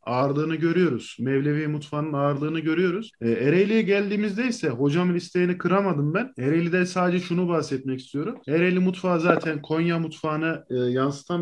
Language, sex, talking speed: Turkish, male, 125 wpm